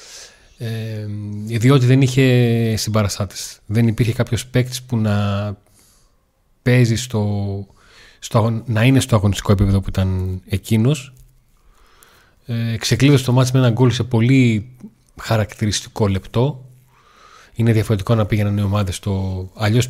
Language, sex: Greek, male